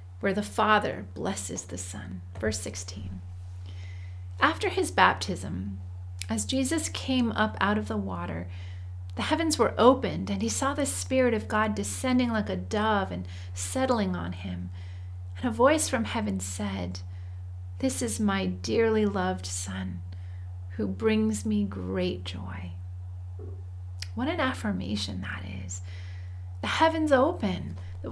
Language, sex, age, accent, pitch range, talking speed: English, female, 40-59, American, 90-115 Hz, 135 wpm